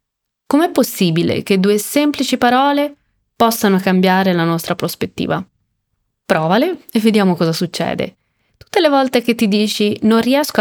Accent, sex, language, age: native, female, Italian, 20-39